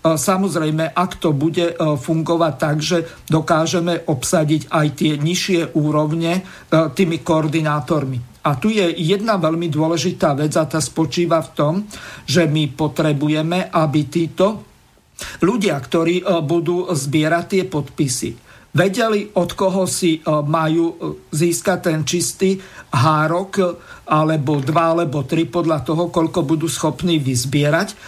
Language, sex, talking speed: Slovak, male, 120 wpm